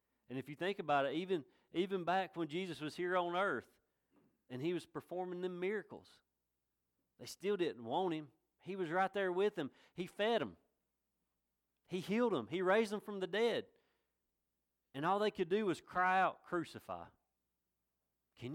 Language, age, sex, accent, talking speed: English, 40-59, male, American, 175 wpm